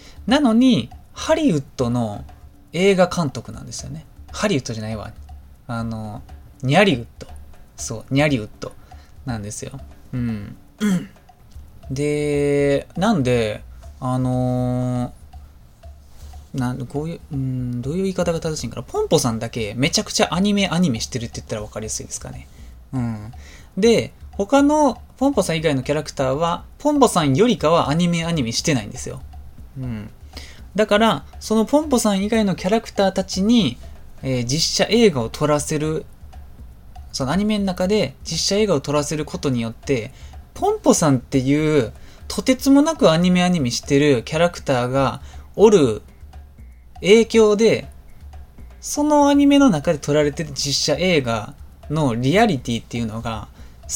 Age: 20-39